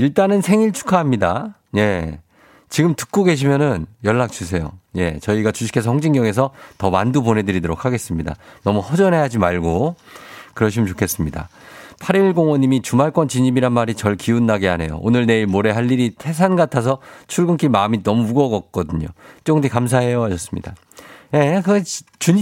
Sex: male